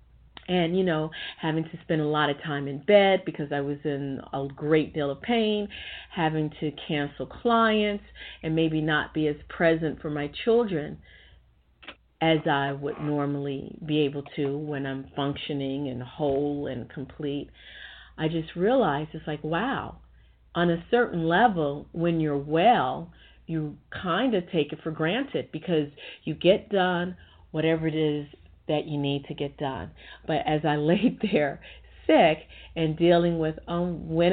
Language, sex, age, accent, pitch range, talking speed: English, female, 40-59, American, 145-170 Hz, 165 wpm